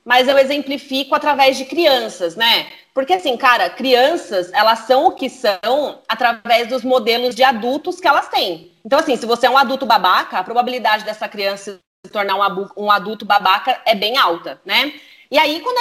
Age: 30-49